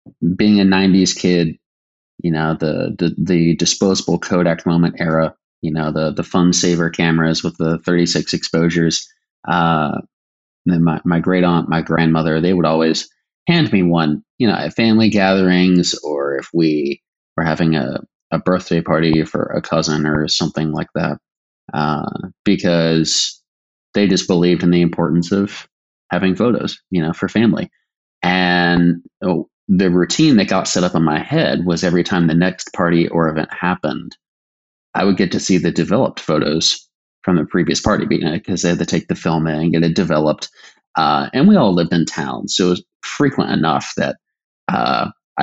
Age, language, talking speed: 20-39, English, 175 wpm